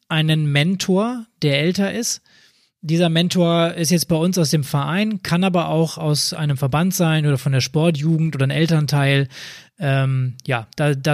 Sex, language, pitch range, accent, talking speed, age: male, German, 145-180 Hz, German, 170 wpm, 20-39